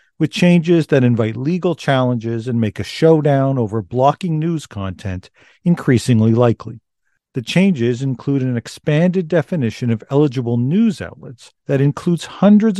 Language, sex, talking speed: English, male, 135 wpm